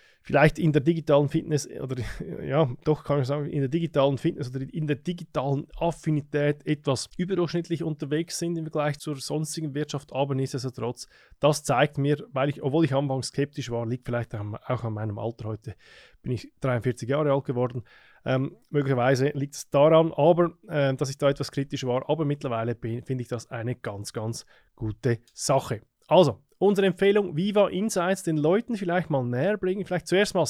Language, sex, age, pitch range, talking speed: German, male, 20-39, 125-165 Hz, 180 wpm